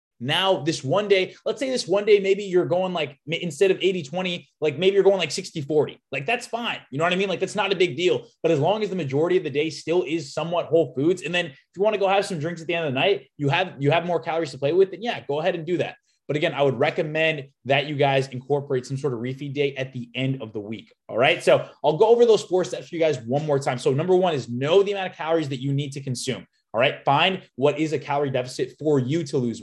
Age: 20-39